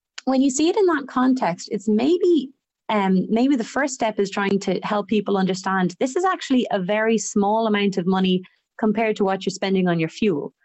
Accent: Irish